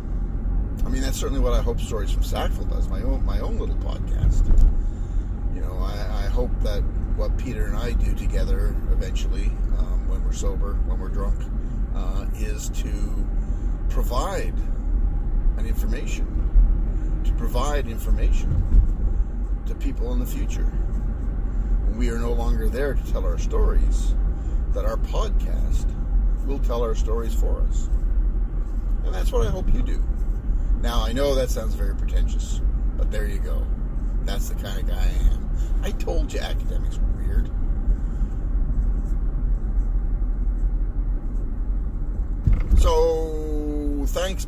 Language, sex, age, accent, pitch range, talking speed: English, male, 50-69, American, 80-115 Hz, 140 wpm